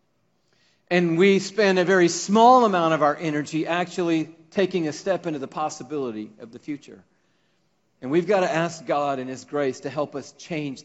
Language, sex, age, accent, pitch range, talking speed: English, male, 40-59, American, 130-180 Hz, 185 wpm